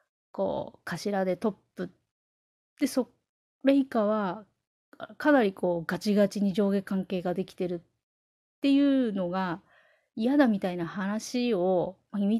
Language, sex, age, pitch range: Japanese, female, 30-49, 190-275 Hz